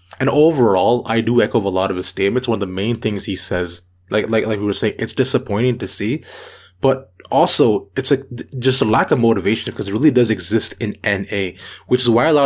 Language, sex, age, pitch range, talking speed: English, male, 20-39, 100-125 Hz, 230 wpm